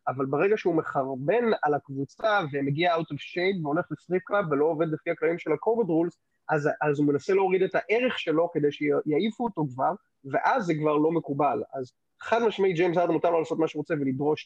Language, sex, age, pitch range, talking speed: Hebrew, male, 20-39, 145-185 Hz, 200 wpm